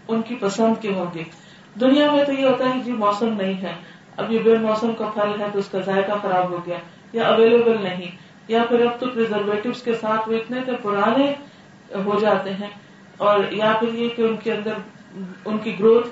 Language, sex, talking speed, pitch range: Urdu, female, 185 wpm, 195-230 Hz